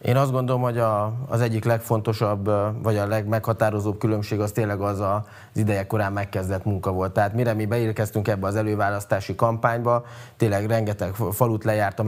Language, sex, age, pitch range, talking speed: Hungarian, male, 20-39, 100-115 Hz, 170 wpm